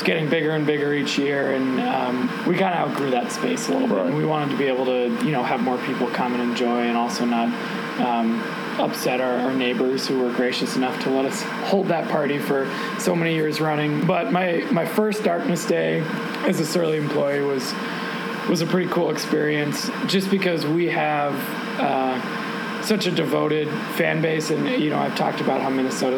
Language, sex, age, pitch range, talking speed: English, male, 20-39, 130-170 Hz, 205 wpm